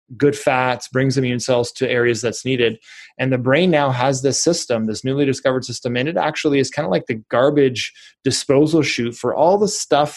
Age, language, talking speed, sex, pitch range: 20-39, English, 205 wpm, male, 120-140 Hz